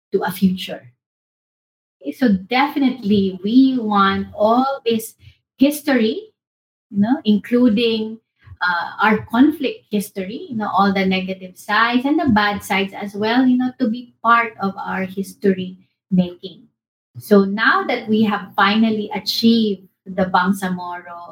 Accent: Filipino